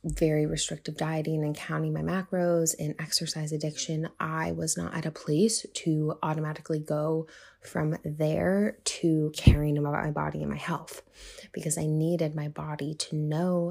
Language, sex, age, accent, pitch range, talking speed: English, female, 20-39, American, 155-175 Hz, 160 wpm